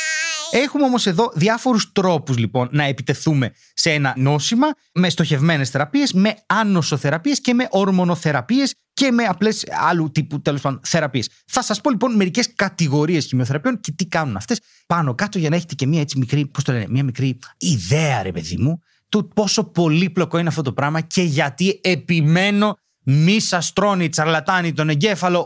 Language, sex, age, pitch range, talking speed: Greek, male, 30-49, 150-205 Hz, 165 wpm